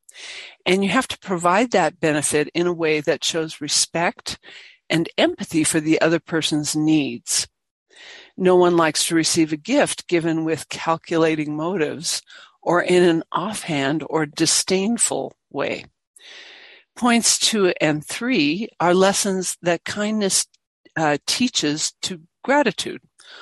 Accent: American